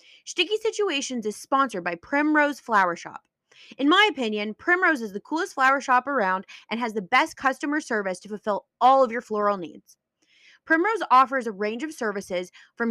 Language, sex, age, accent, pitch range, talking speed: English, female, 20-39, American, 210-295 Hz, 175 wpm